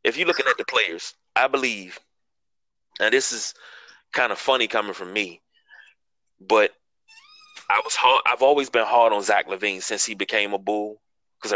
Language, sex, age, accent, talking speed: English, male, 20-39, American, 170 wpm